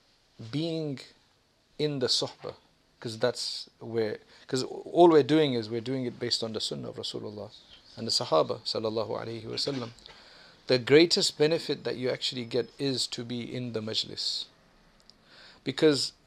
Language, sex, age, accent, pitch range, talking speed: English, male, 40-59, South African, 115-135 Hz, 140 wpm